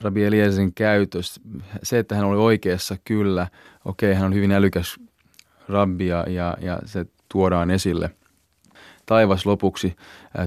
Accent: native